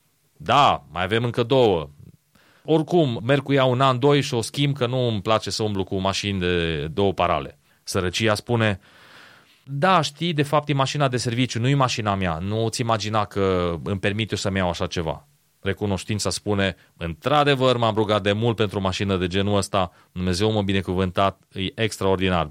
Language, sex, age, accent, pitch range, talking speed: Romanian, male, 30-49, native, 100-145 Hz, 185 wpm